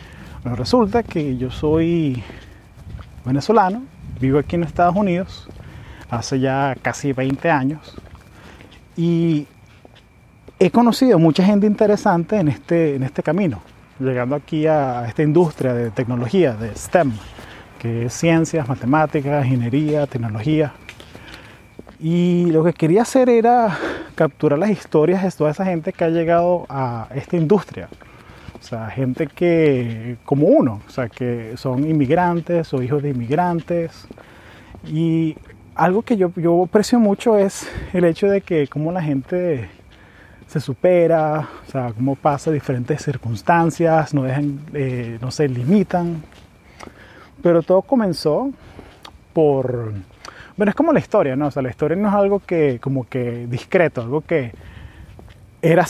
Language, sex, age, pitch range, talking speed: Spanish, male, 30-49, 125-175 Hz, 135 wpm